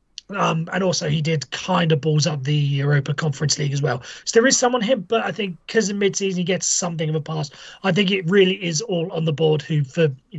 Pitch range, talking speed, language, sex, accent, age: 145-175 Hz, 255 wpm, English, male, British, 30-49